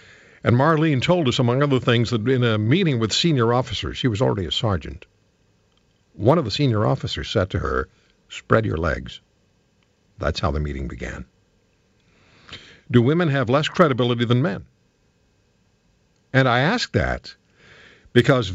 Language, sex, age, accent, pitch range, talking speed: English, male, 60-79, American, 100-135 Hz, 150 wpm